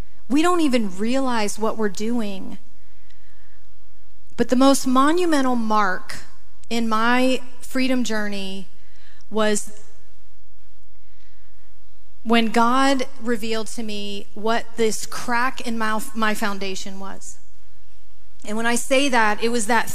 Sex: female